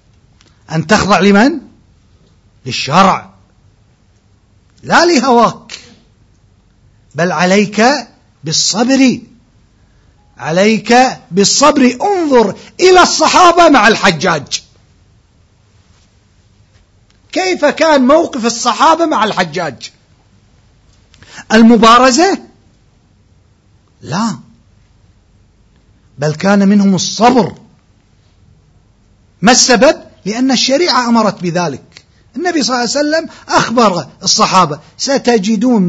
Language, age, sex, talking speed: Arabic, 50-69, male, 70 wpm